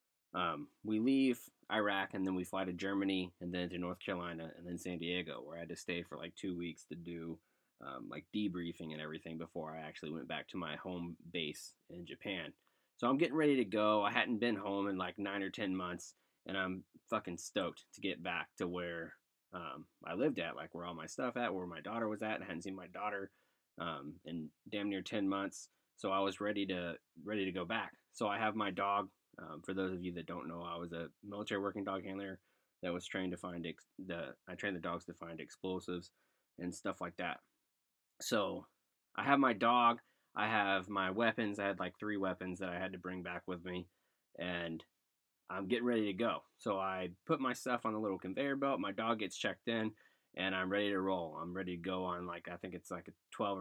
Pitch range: 85-100 Hz